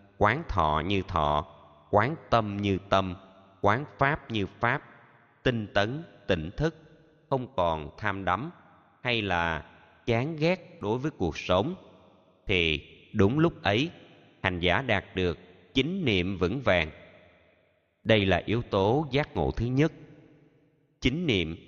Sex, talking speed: male, 140 wpm